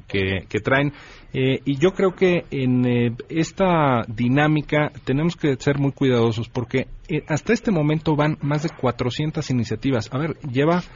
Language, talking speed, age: Spanish, 165 wpm, 40-59